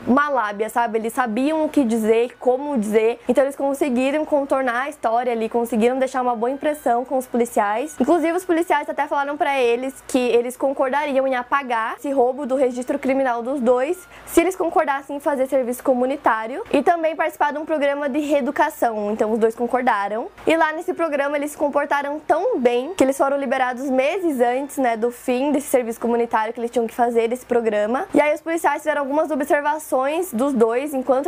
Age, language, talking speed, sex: 20-39, Portuguese, 195 wpm, female